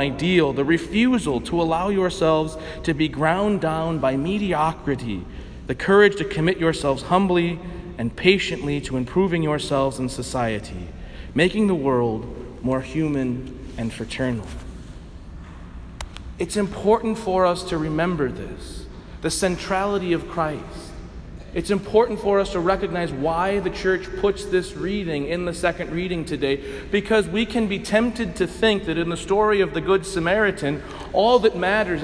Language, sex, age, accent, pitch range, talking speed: English, male, 40-59, American, 120-190 Hz, 145 wpm